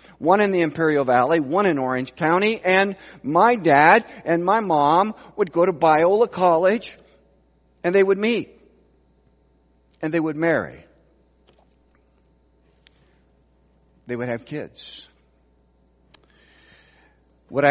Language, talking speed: English, 110 wpm